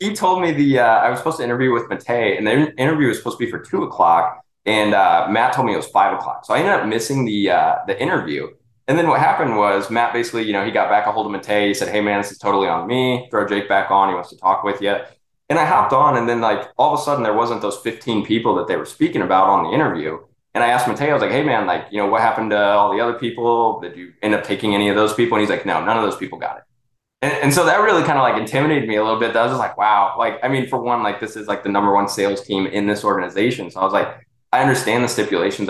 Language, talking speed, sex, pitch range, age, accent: English, 305 wpm, male, 100-120 Hz, 20-39, American